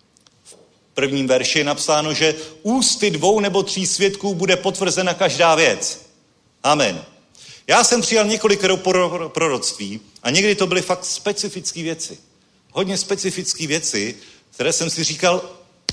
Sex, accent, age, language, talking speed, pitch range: male, native, 40-59, Czech, 140 wpm, 140-190 Hz